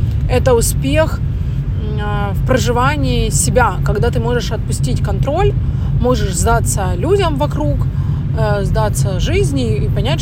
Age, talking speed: 30-49, 105 wpm